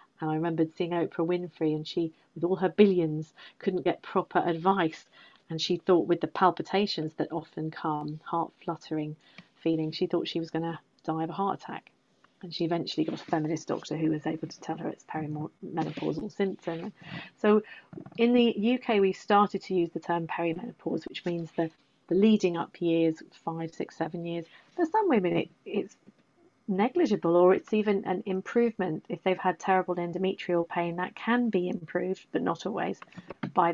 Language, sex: English, female